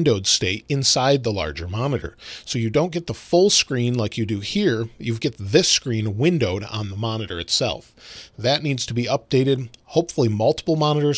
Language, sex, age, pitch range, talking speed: English, male, 40-59, 115-150 Hz, 185 wpm